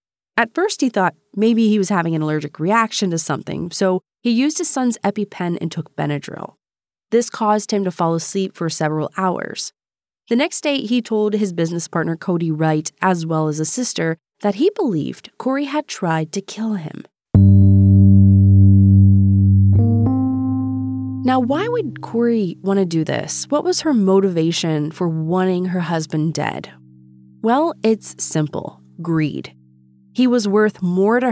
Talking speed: 155 wpm